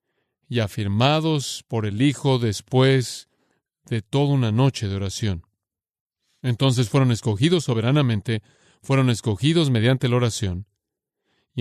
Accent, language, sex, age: Mexican, Spanish, male, 40-59